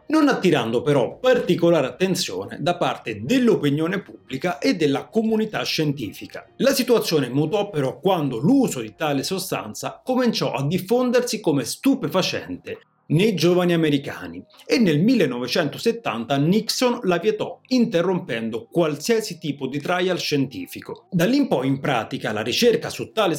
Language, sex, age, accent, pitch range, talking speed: Italian, male, 30-49, native, 145-220 Hz, 130 wpm